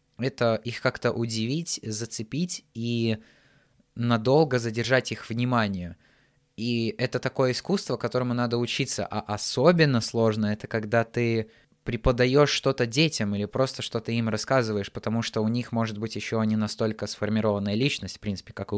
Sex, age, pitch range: male, 20-39, 105-120 Hz